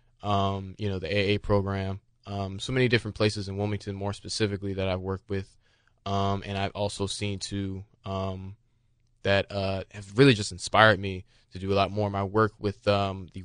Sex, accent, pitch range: male, American, 95-110 Hz